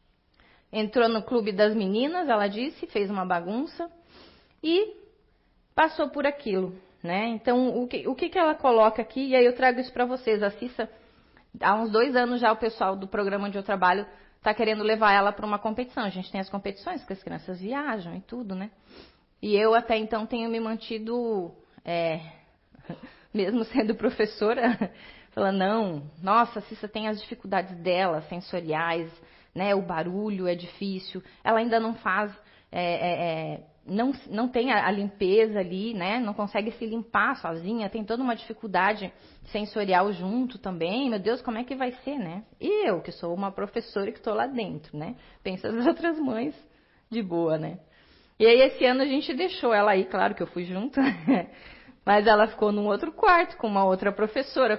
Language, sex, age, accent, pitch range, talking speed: Portuguese, female, 30-49, Brazilian, 195-240 Hz, 185 wpm